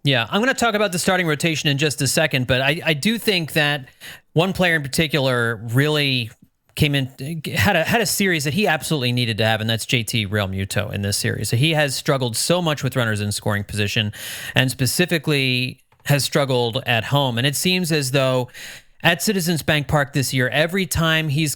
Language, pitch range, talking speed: English, 125-155 Hz, 210 wpm